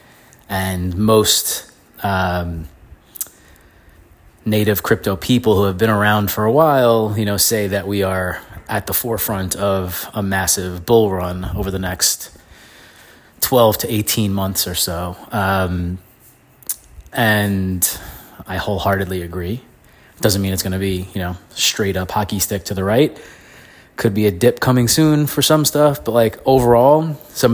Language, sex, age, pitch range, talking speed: English, male, 20-39, 95-110 Hz, 150 wpm